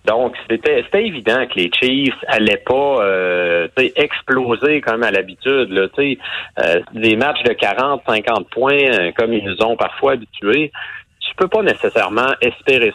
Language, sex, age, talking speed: French, male, 40-59, 160 wpm